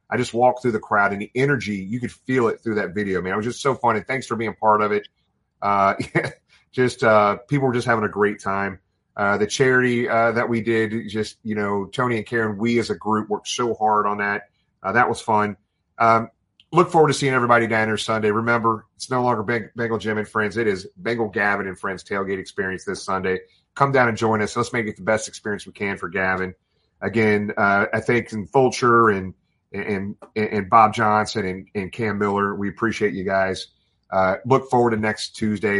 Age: 30-49